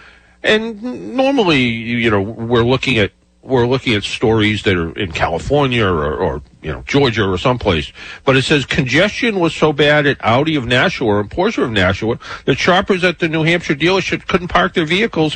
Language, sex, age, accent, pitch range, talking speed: English, male, 50-69, American, 105-155 Hz, 190 wpm